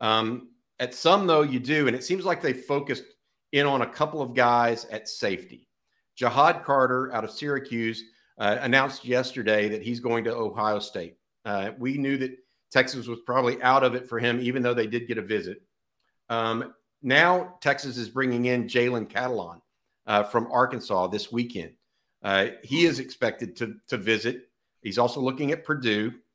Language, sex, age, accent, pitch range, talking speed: English, male, 50-69, American, 110-130 Hz, 180 wpm